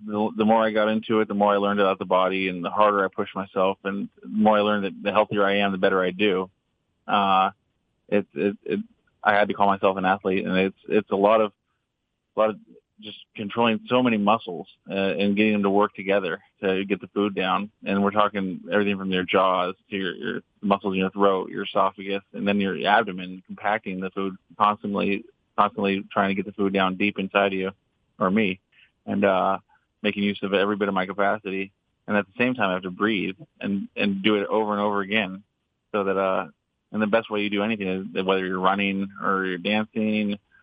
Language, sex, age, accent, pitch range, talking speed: English, male, 20-39, American, 95-105 Hz, 225 wpm